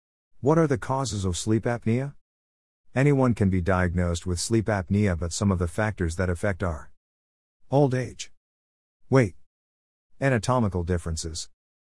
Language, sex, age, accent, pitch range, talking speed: English, male, 50-69, American, 80-115 Hz, 135 wpm